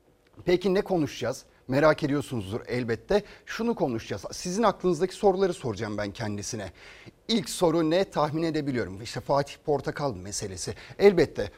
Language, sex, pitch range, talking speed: Turkish, male, 140-185 Hz, 125 wpm